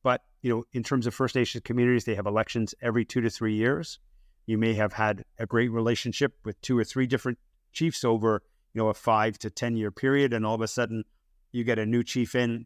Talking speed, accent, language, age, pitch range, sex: 230 wpm, American, English, 30-49, 105-120 Hz, male